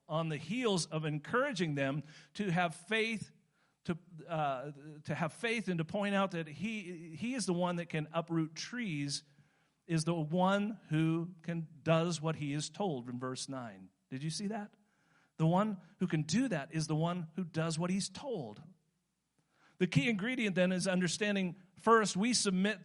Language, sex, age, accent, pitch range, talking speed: English, male, 50-69, American, 155-195 Hz, 180 wpm